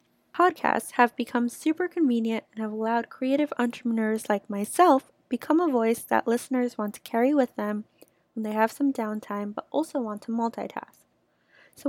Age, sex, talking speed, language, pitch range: 10-29, female, 165 wpm, English, 215-280 Hz